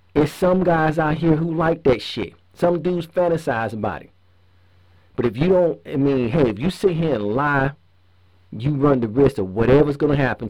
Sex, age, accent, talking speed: male, 40-59, American, 205 wpm